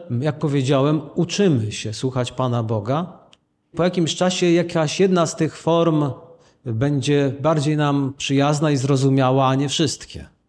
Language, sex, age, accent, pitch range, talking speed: Polish, male, 40-59, native, 130-175 Hz, 135 wpm